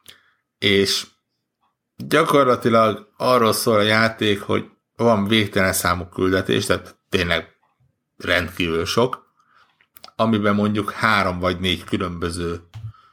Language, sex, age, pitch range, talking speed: Hungarian, male, 60-79, 90-110 Hz, 95 wpm